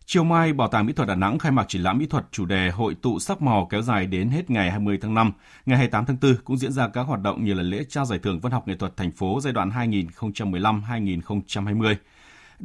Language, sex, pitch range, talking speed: Vietnamese, male, 95-130 Hz, 250 wpm